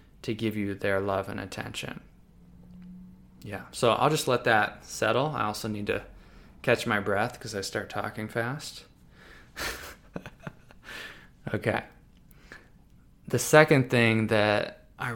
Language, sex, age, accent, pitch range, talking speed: English, male, 20-39, American, 105-120 Hz, 125 wpm